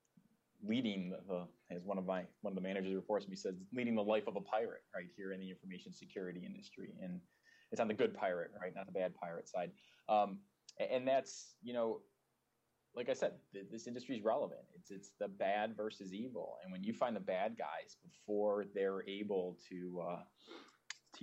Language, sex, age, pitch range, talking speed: English, male, 20-39, 95-110 Hz, 200 wpm